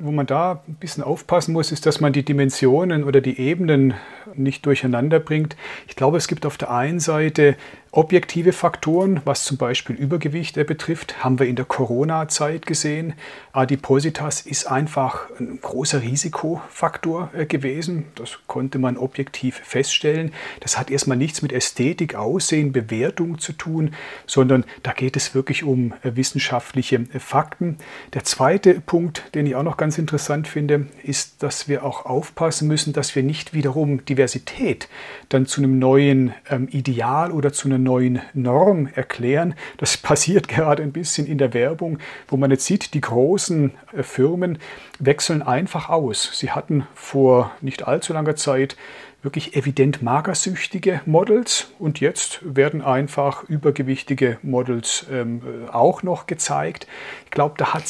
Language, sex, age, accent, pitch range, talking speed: German, male, 40-59, German, 135-160 Hz, 150 wpm